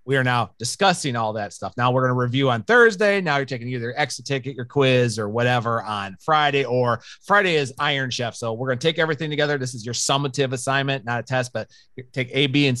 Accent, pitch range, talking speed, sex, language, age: American, 115-145 Hz, 240 wpm, male, English, 30-49